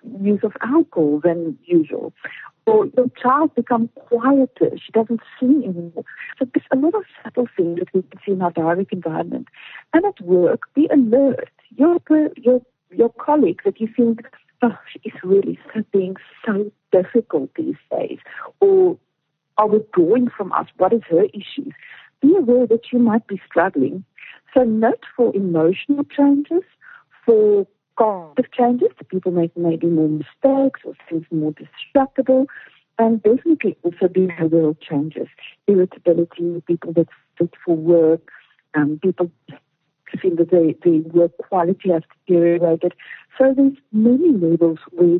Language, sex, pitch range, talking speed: English, female, 170-265 Hz, 150 wpm